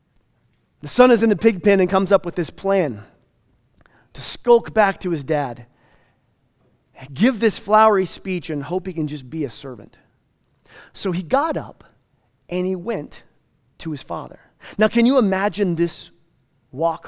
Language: English